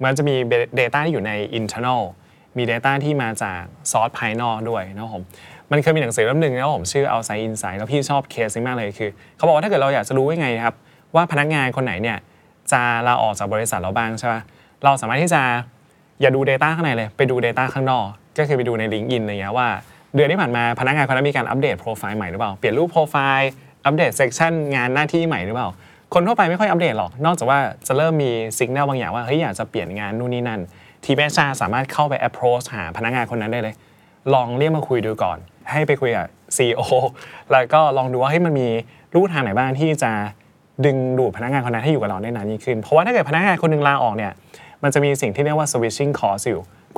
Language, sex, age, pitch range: Thai, male, 20-39, 115-145 Hz